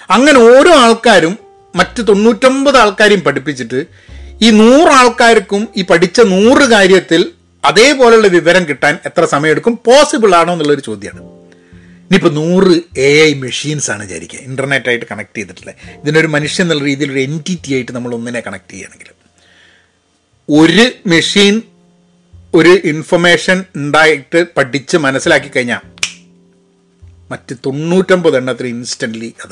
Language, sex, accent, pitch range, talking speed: Malayalam, male, native, 135-215 Hz, 110 wpm